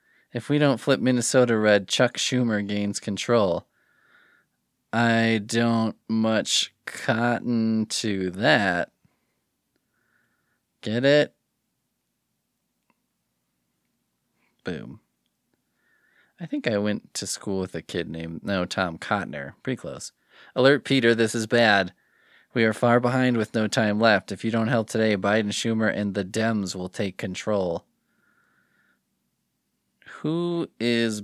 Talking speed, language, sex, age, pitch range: 120 wpm, English, male, 20-39, 95-115 Hz